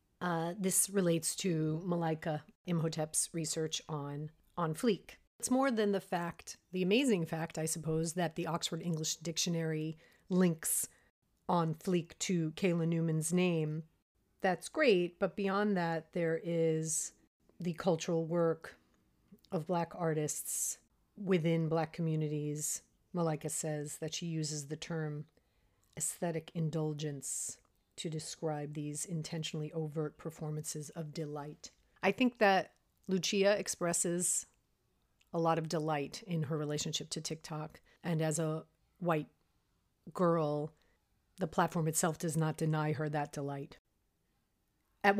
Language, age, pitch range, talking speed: English, 30-49, 155-180 Hz, 125 wpm